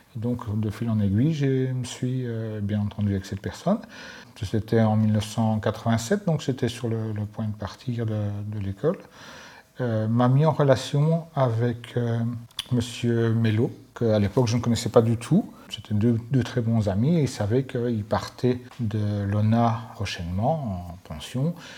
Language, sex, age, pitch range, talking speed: French, male, 40-59, 105-125 Hz, 170 wpm